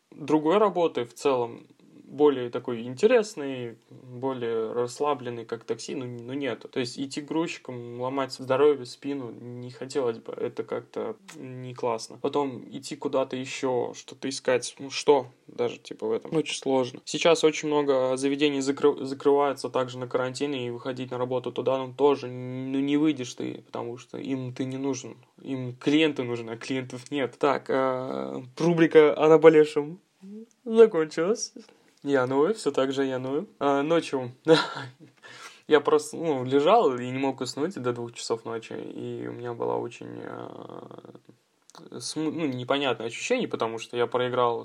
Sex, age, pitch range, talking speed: male, 10-29, 125-150 Hz, 155 wpm